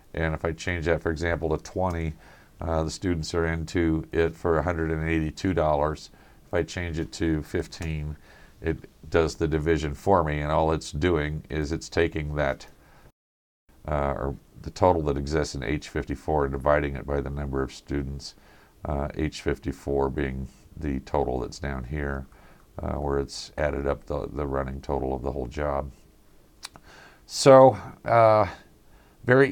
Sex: male